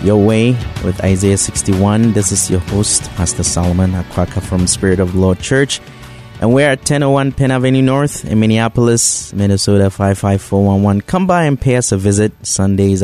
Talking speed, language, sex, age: 175 wpm, English, male, 20-39